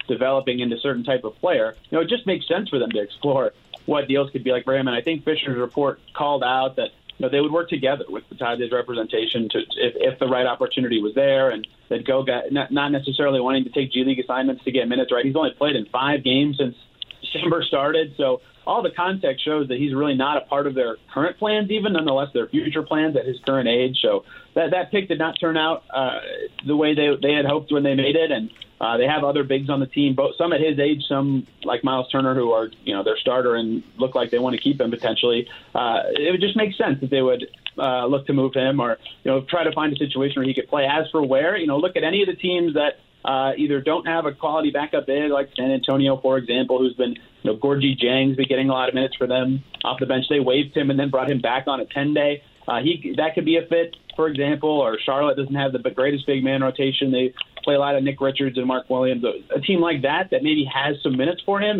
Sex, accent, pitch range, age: male, American, 130-155 Hz, 30-49